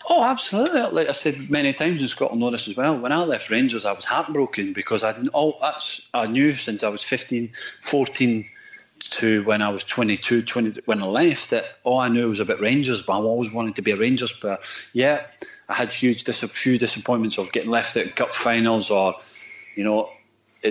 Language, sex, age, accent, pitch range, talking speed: English, male, 30-49, British, 105-125 Hz, 210 wpm